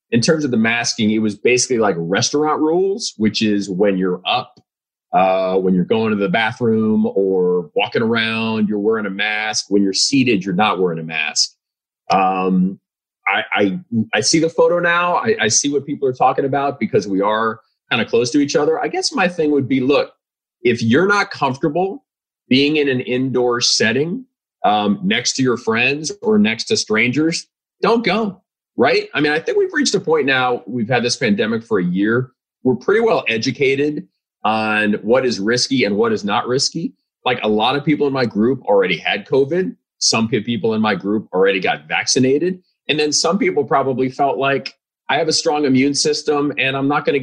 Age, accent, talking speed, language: 30-49, American, 200 wpm, English